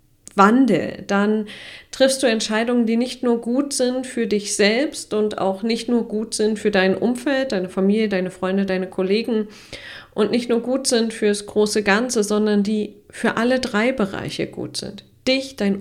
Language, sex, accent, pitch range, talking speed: German, female, German, 175-220 Hz, 180 wpm